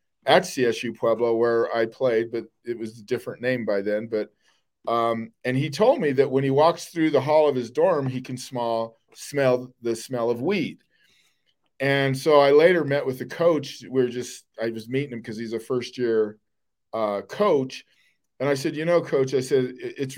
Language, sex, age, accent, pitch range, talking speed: English, male, 40-59, American, 115-135 Hz, 205 wpm